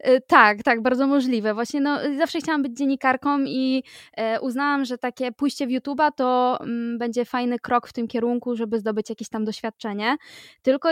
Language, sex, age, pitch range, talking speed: Polish, female, 20-39, 215-250 Hz, 175 wpm